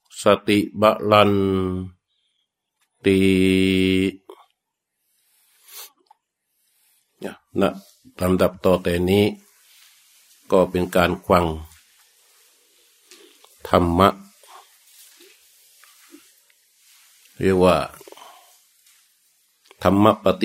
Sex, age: male, 50-69